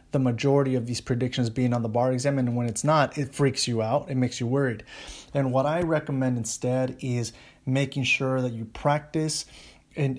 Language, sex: English, male